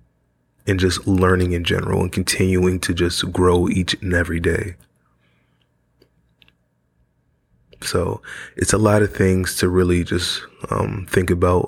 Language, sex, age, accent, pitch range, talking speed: English, male, 20-39, American, 85-95 Hz, 135 wpm